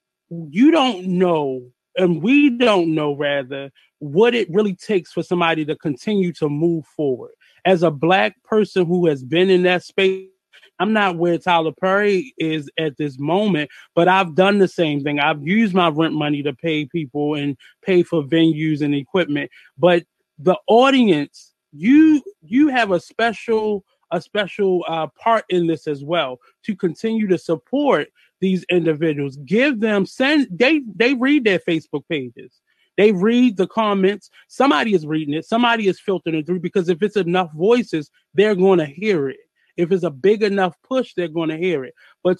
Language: English